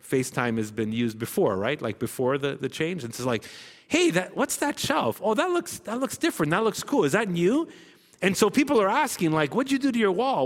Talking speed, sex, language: 250 wpm, male, English